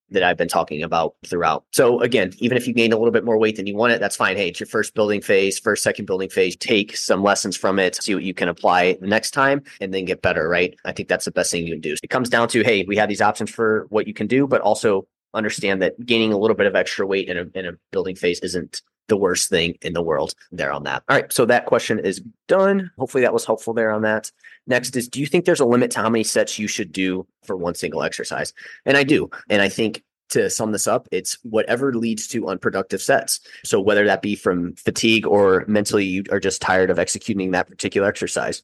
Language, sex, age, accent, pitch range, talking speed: English, male, 30-49, American, 95-115 Hz, 260 wpm